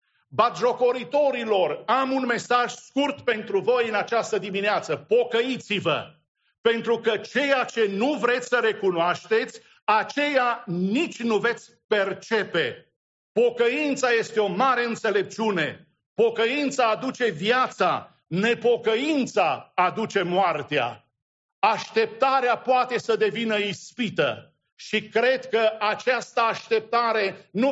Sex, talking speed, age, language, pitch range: male, 100 wpm, 50-69, English, 195-245 Hz